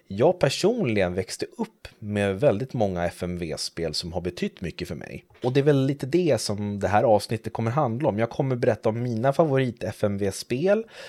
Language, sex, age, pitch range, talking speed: Swedish, male, 30-49, 95-120 Hz, 180 wpm